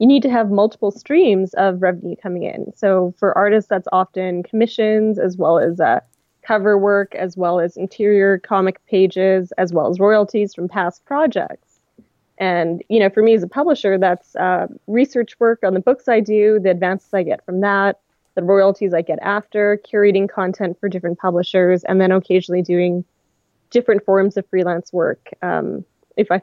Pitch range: 185-215 Hz